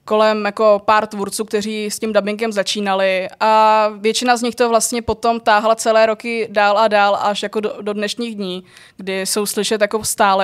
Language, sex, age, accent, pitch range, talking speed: Czech, female, 20-39, native, 200-225 Hz, 185 wpm